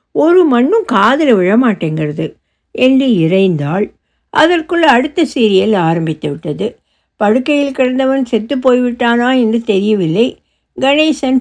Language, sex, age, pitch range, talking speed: Tamil, female, 60-79, 190-265 Hz, 90 wpm